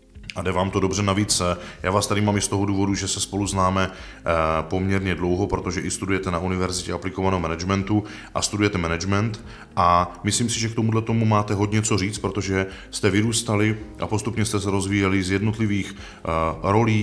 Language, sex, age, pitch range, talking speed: Czech, male, 20-39, 90-105 Hz, 185 wpm